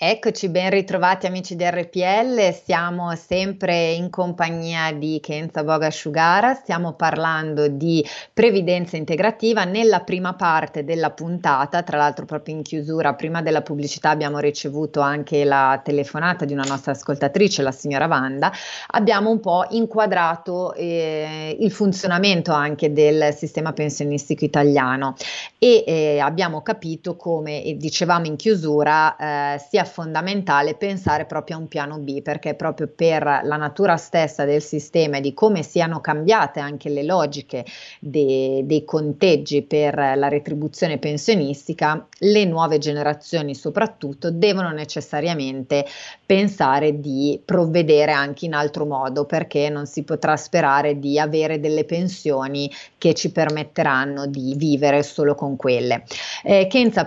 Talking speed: 135 wpm